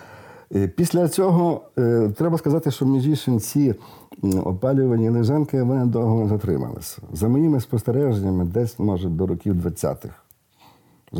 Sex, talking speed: male, 115 wpm